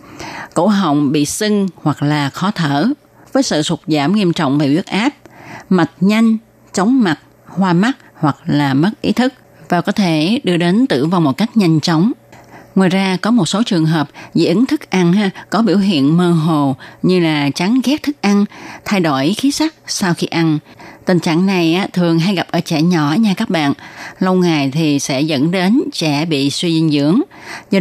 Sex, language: female, Vietnamese